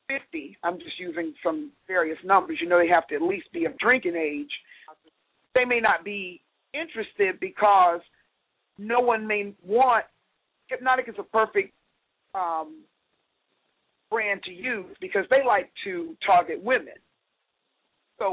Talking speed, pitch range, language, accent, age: 140 wpm, 185-270 Hz, English, American, 40-59